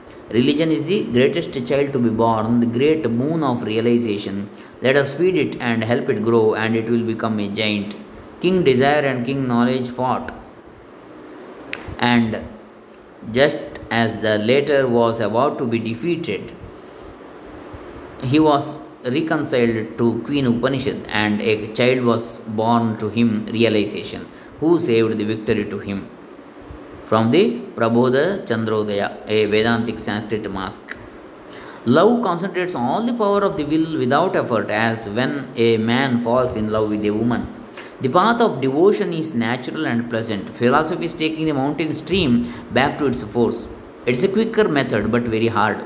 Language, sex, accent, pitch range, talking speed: English, male, Indian, 110-145 Hz, 155 wpm